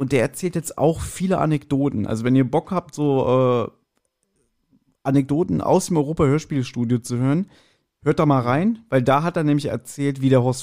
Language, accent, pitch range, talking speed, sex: German, German, 120-155 Hz, 185 wpm, male